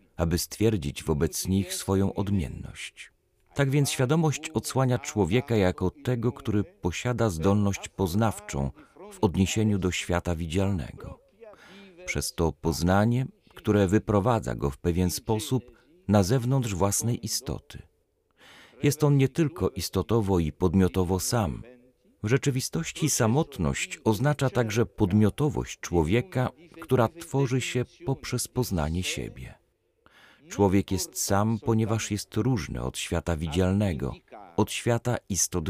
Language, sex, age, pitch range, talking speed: Polish, male, 40-59, 95-135 Hz, 115 wpm